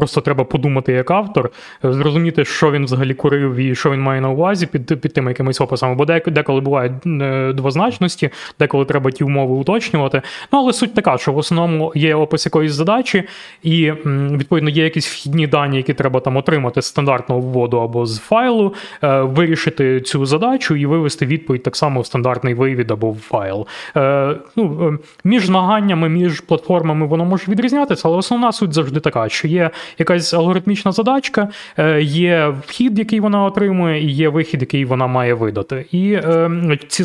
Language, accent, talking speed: Ukrainian, native, 165 wpm